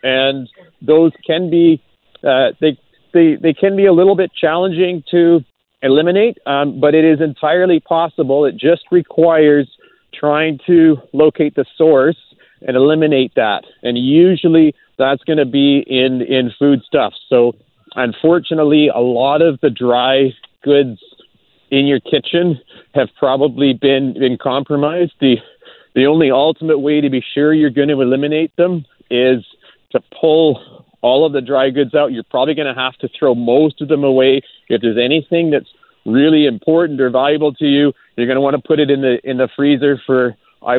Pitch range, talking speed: 130-155 Hz, 170 wpm